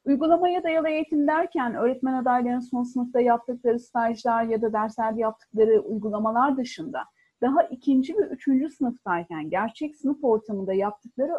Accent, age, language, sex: native, 40-59, Turkish, female